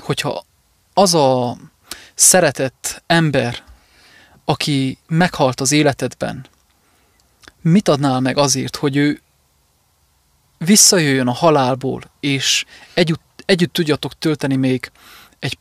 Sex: male